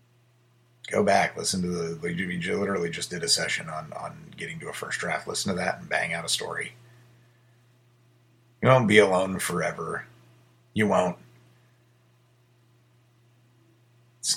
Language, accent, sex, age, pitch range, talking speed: English, American, male, 30-49, 110-120 Hz, 140 wpm